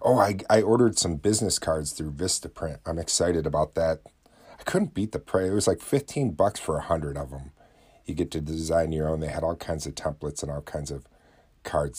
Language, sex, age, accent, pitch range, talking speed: English, male, 40-59, American, 75-90 Hz, 220 wpm